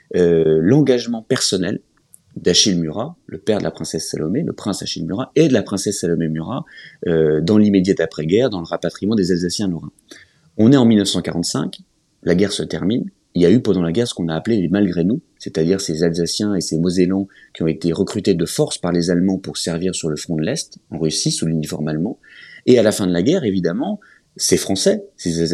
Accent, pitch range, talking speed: French, 85-130 Hz, 220 wpm